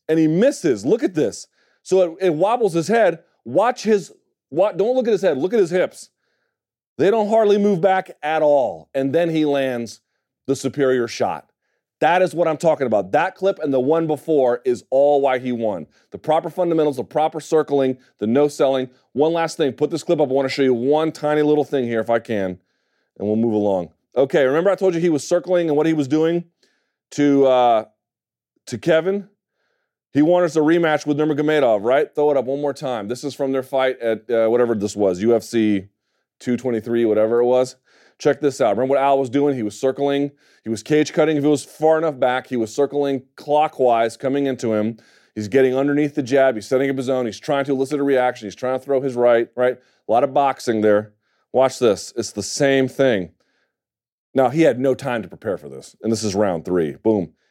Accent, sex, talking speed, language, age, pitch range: American, male, 220 wpm, English, 30-49, 125-155 Hz